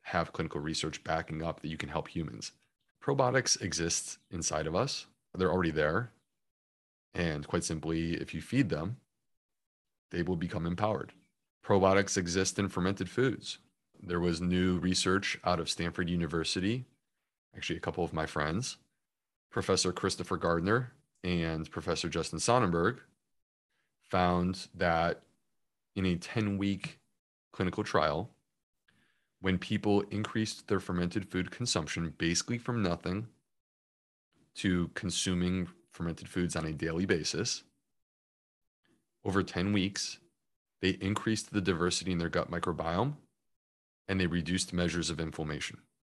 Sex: male